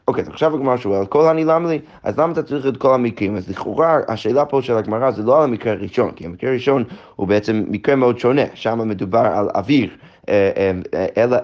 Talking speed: 210 wpm